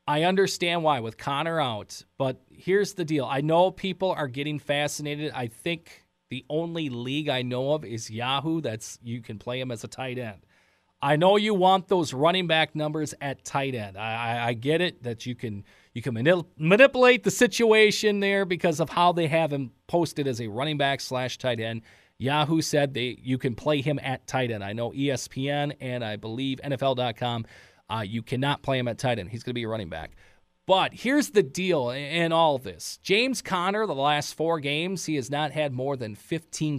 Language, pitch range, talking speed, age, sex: English, 120-170 Hz, 210 wpm, 40-59, male